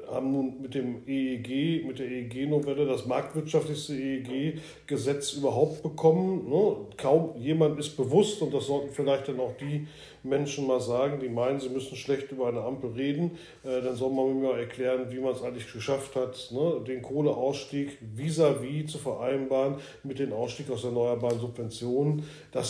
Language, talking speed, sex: German, 160 wpm, male